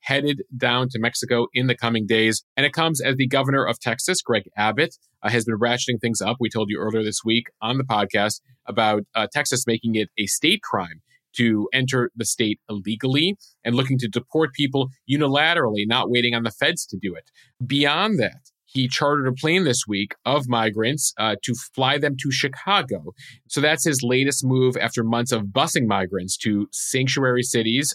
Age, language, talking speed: 30-49, English, 190 wpm